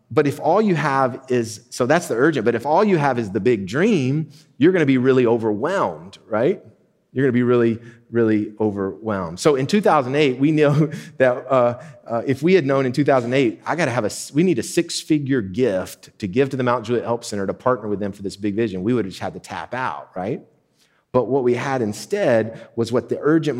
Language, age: English, 30-49